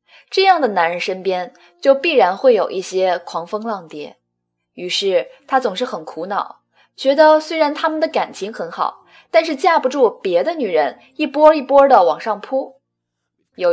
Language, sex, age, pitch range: Chinese, female, 20-39, 215-350 Hz